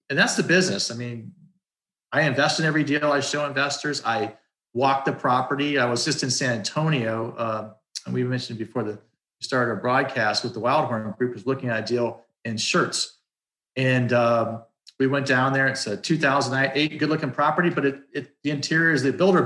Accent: American